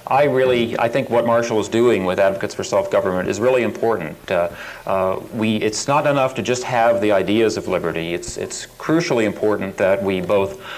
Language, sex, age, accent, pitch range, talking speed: English, male, 40-59, American, 105-135 Hz, 190 wpm